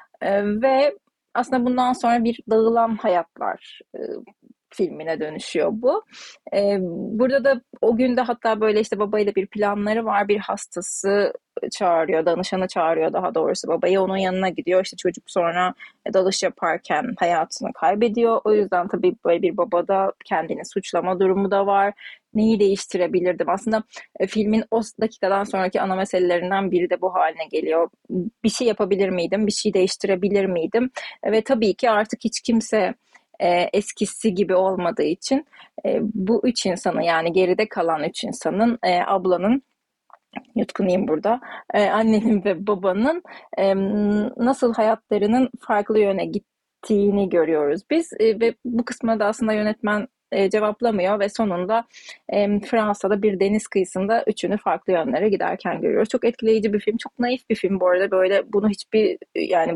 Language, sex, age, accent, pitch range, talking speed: Turkish, female, 30-49, native, 190-230 Hz, 135 wpm